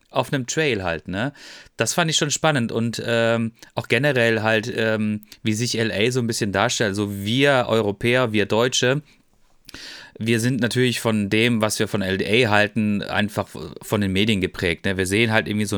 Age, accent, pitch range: 30-49, German, 105-125 Hz